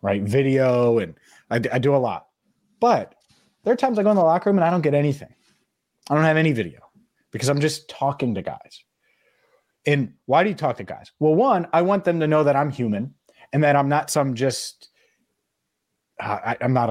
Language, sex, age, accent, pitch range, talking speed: English, male, 30-49, American, 115-155 Hz, 215 wpm